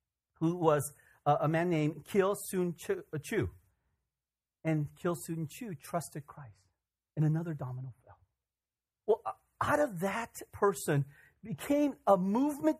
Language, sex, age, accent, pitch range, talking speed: English, male, 40-59, American, 110-170 Hz, 115 wpm